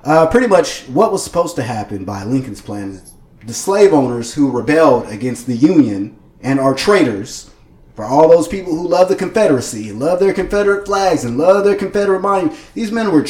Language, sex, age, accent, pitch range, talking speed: English, male, 30-49, American, 135-180 Hz, 195 wpm